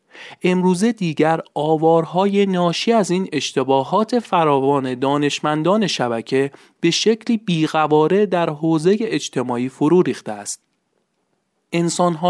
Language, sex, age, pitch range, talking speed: Persian, male, 40-59, 135-185 Hz, 100 wpm